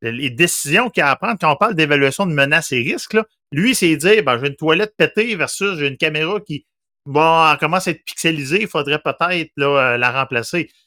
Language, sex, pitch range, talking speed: French, male, 130-170 Hz, 220 wpm